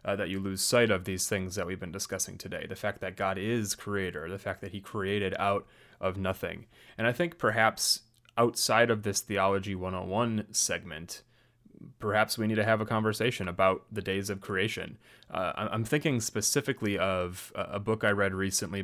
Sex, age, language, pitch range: male, 30-49, English, 95-110 Hz